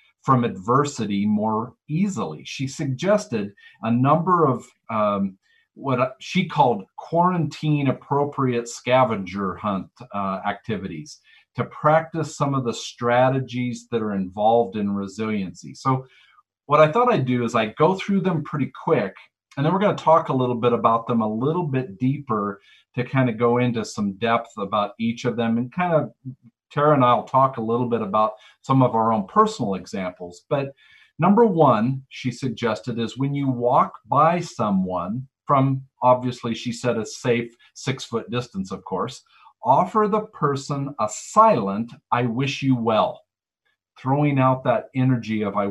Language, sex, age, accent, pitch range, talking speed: English, male, 40-59, American, 115-150 Hz, 160 wpm